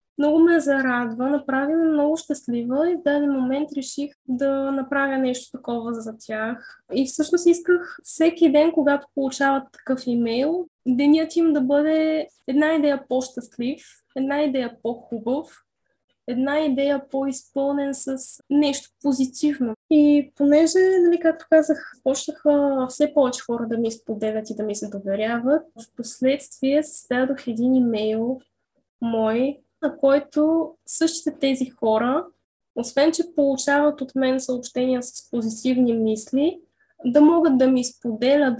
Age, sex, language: 10-29, female, Bulgarian